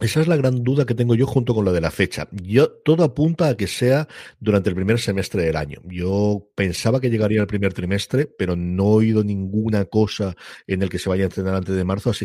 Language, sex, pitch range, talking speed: Spanish, male, 90-110 Hz, 245 wpm